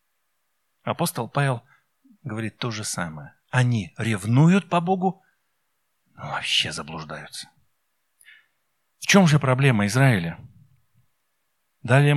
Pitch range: 125-165 Hz